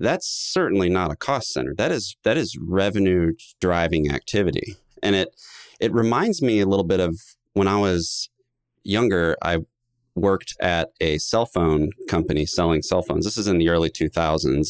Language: English